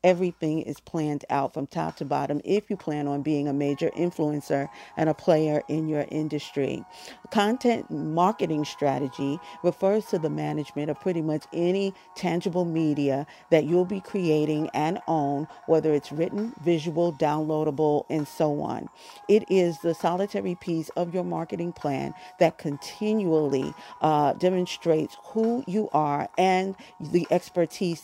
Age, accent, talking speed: 40-59, American, 145 wpm